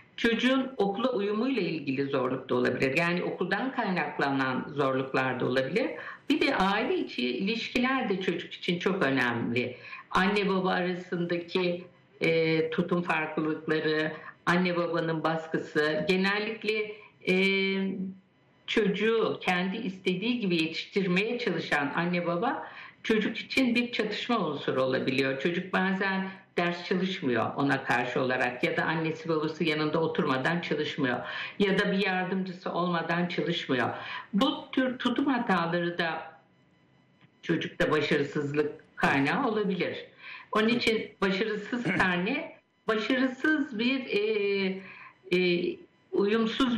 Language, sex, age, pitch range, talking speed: Turkish, female, 60-79, 165-215 Hz, 110 wpm